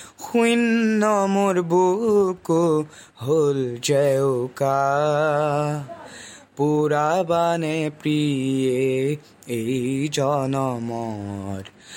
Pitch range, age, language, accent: 135-170 Hz, 20-39, English, Indian